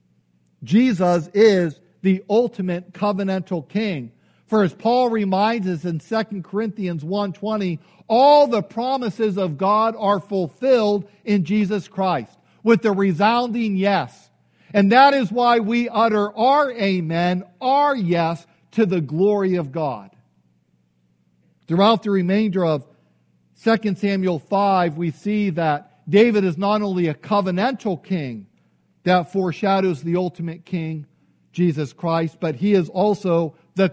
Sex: male